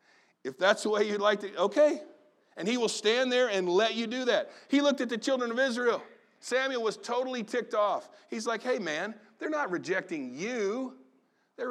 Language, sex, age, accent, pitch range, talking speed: English, male, 40-59, American, 185-255 Hz, 200 wpm